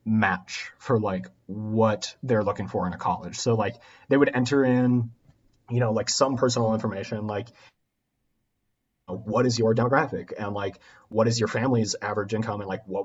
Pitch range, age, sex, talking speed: 105-125 Hz, 30-49, male, 175 wpm